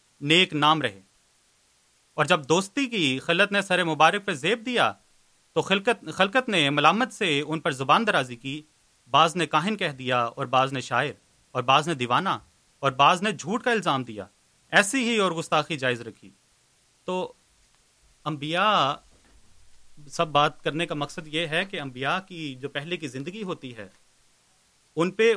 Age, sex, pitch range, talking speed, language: 30-49, male, 140-185 Hz, 170 wpm, Urdu